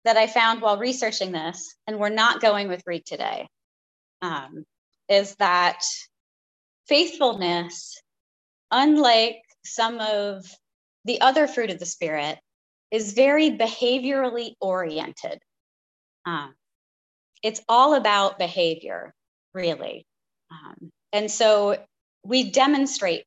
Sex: female